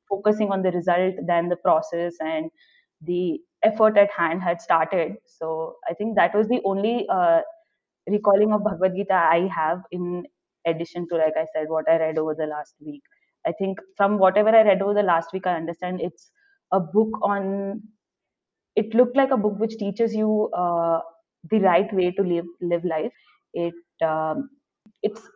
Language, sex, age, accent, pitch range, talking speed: English, female, 20-39, Indian, 170-215 Hz, 180 wpm